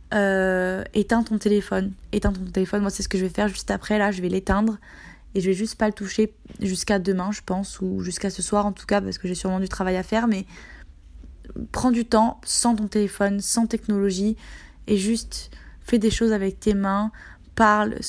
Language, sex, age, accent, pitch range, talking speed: French, female, 20-39, French, 190-220 Hz, 210 wpm